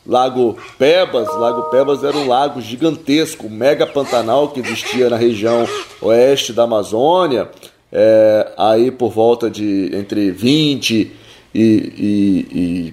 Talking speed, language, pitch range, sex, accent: 125 wpm, Portuguese, 120-175 Hz, male, Brazilian